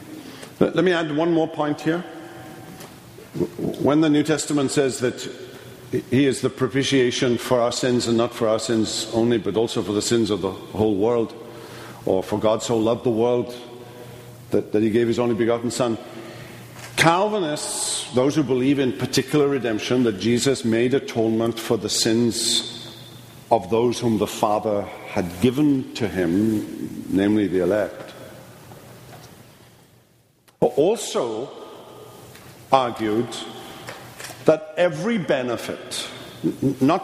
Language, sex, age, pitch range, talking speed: English, male, 50-69, 115-150 Hz, 135 wpm